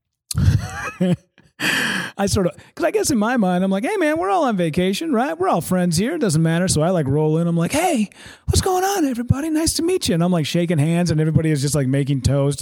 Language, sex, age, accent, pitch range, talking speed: English, male, 30-49, American, 120-175 Hz, 250 wpm